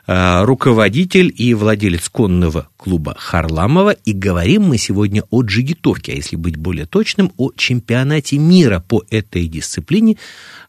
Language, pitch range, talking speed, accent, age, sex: Russian, 90-135 Hz, 130 wpm, native, 50-69, male